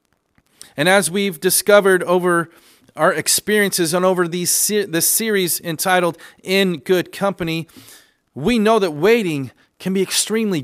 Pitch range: 120-180 Hz